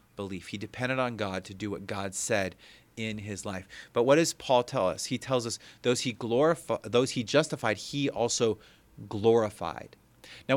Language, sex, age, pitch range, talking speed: English, male, 30-49, 105-130 Hz, 180 wpm